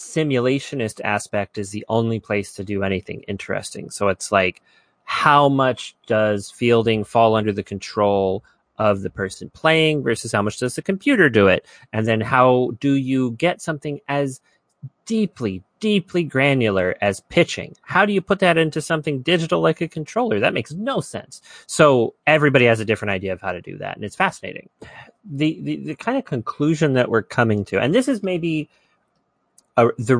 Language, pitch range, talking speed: English, 105-150 Hz, 180 wpm